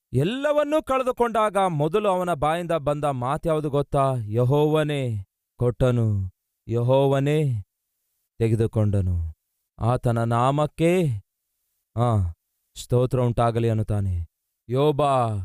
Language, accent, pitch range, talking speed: Kannada, native, 115-175 Hz, 70 wpm